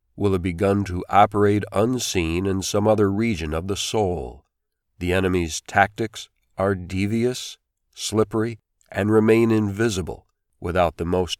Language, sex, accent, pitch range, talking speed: English, male, American, 90-110 Hz, 130 wpm